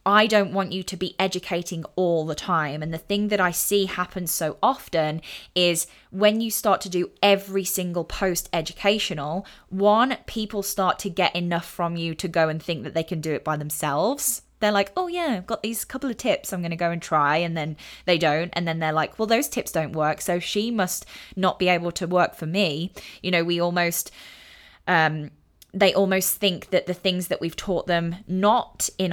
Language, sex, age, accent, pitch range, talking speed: English, female, 10-29, British, 170-200 Hz, 210 wpm